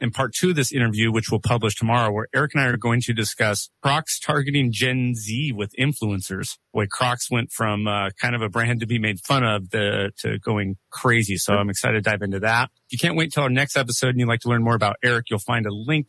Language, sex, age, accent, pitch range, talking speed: English, male, 30-49, American, 105-130 Hz, 255 wpm